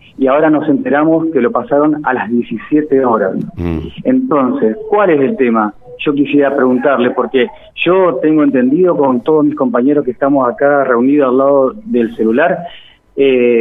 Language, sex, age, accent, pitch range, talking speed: Spanish, male, 40-59, Argentinian, 130-165 Hz, 160 wpm